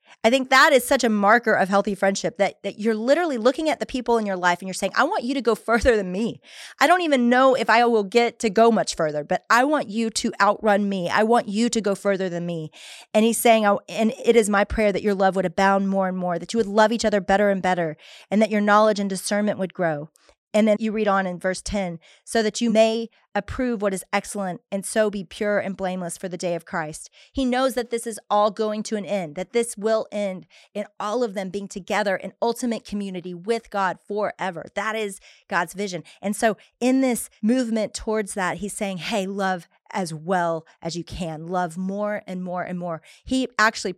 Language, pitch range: English, 185-225 Hz